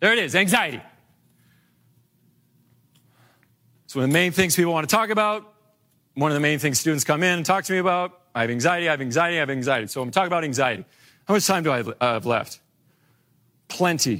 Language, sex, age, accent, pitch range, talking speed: English, male, 40-59, American, 140-205 Hz, 210 wpm